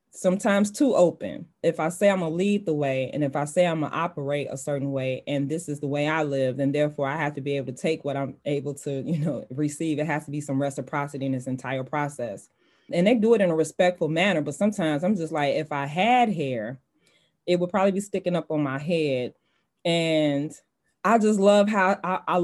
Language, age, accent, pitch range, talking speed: English, 20-39, American, 140-170 Hz, 240 wpm